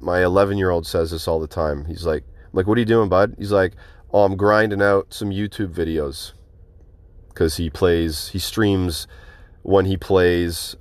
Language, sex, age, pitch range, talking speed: English, male, 30-49, 80-100 Hz, 190 wpm